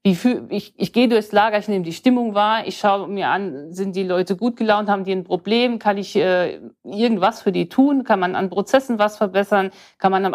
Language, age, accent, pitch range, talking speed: German, 50-69, German, 185-220 Hz, 220 wpm